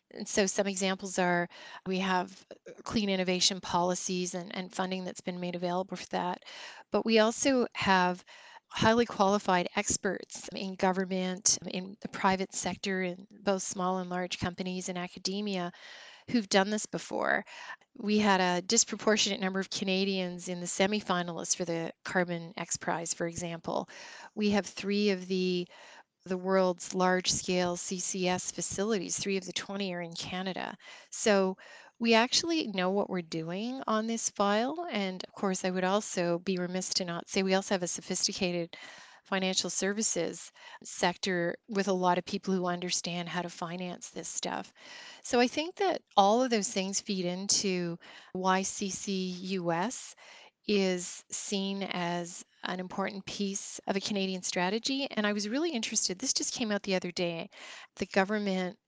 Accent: American